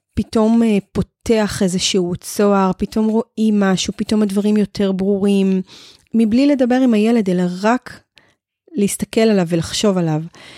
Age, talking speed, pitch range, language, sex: 20-39, 120 wpm, 185-220 Hz, Hebrew, female